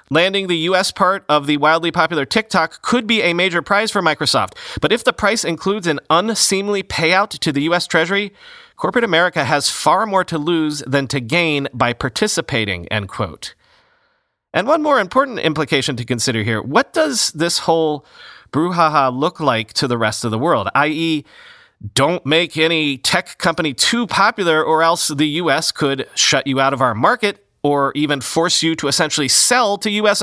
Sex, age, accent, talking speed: male, 30-49, American, 180 wpm